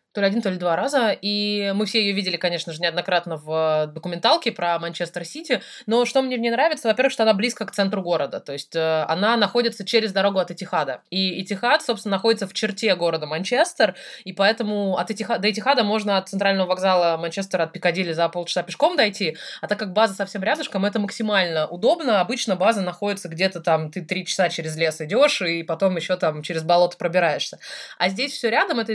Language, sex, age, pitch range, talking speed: Russian, female, 20-39, 170-215 Hz, 200 wpm